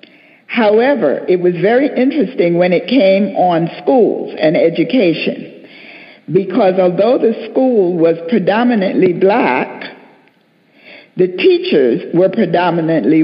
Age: 60-79